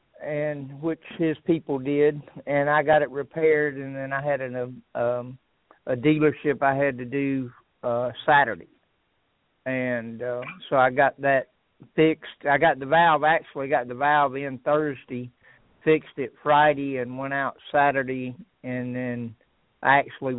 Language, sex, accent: English, male, American